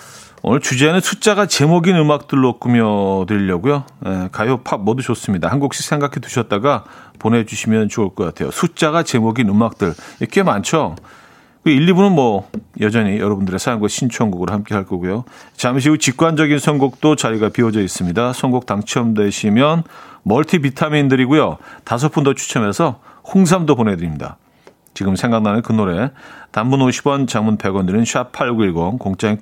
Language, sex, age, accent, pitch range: Korean, male, 40-59, native, 105-150 Hz